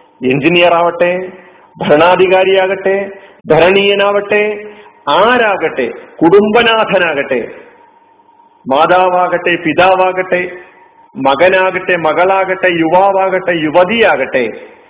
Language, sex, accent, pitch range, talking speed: Malayalam, male, native, 165-220 Hz, 50 wpm